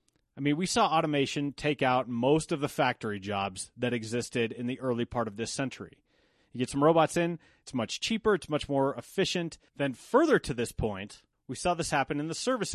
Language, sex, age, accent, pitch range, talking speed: English, male, 30-49, American, 120-165 Hz, 210 wpm